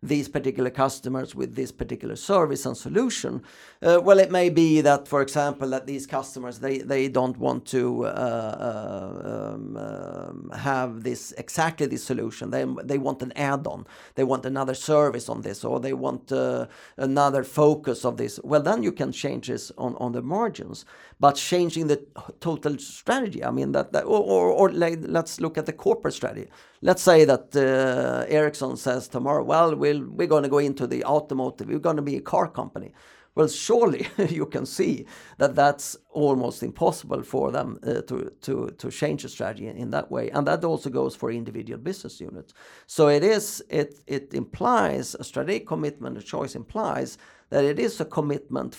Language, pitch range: Swedish, 130-155 Hz